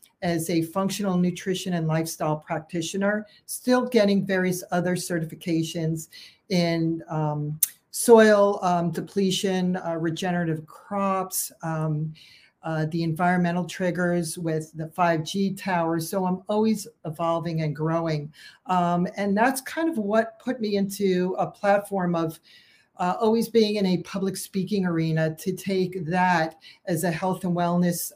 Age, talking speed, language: 50-69, 135 wpm, English